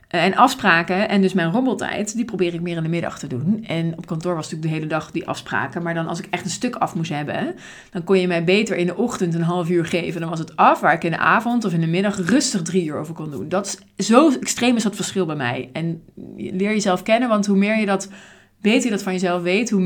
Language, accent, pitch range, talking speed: Dutch, Dutch, 175-240 Hz, 280 wpm